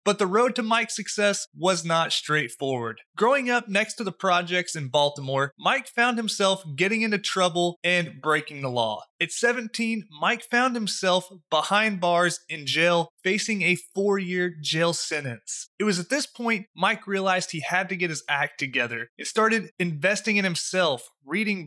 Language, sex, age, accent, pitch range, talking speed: English, male, 30-49, American, 160-205 Hz, 170 wpm